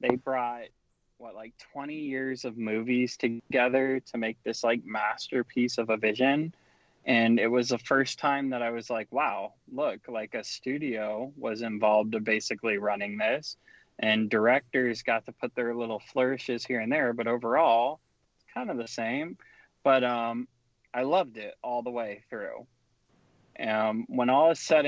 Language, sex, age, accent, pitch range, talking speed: English, male, 20-39, American, 115-130 Hz, 170 wpm